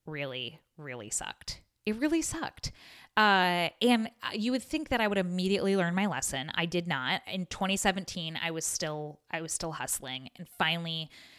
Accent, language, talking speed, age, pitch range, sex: American, English, 170 wpm, 20-39, 150-210 Hz, female